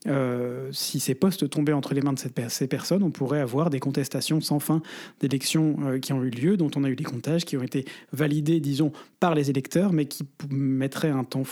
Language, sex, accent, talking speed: French, male, French, 235 wpm